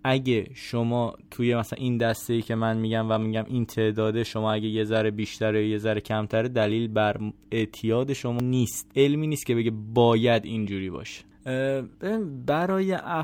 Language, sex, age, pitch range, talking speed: Persian, male, 20-39, 110-125 Hz, 160 wpm